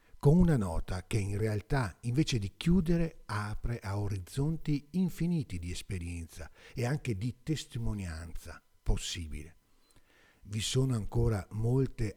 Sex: male